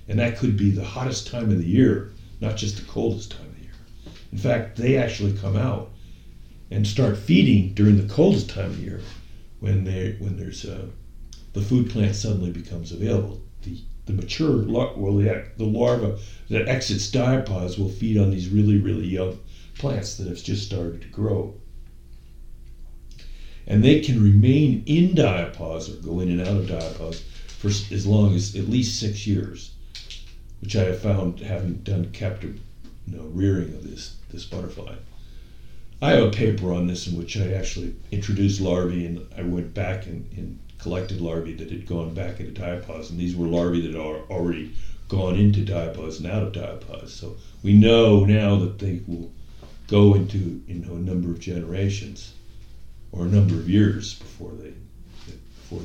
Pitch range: 90-110 Hz